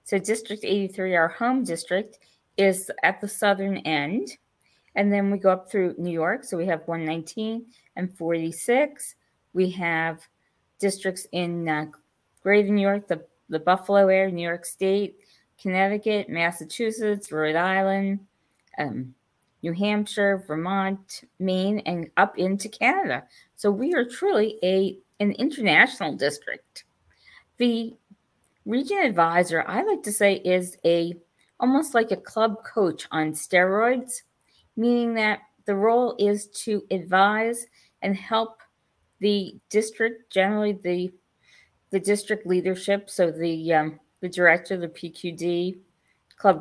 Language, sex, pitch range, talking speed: English, female, 175-210 Hz, 125 wpm